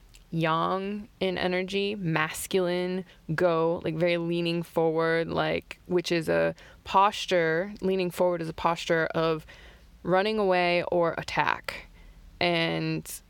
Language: English